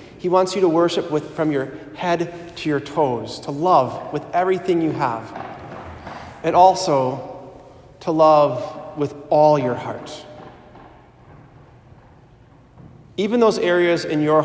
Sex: male